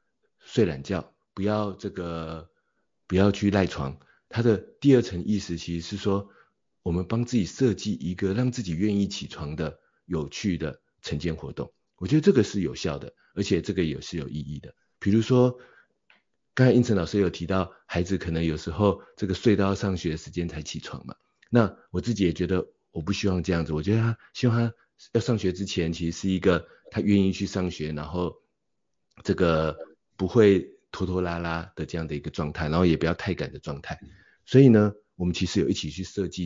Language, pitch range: Chinese, 80-100 Hz